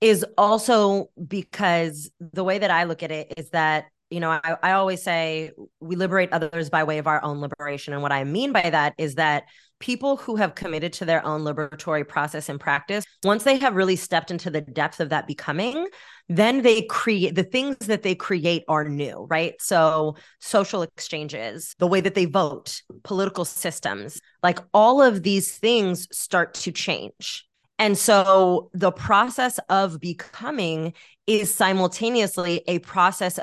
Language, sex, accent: English, female, American